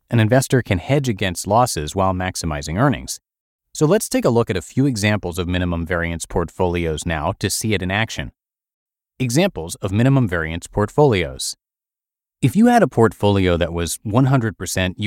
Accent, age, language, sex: American, 30-49, English, male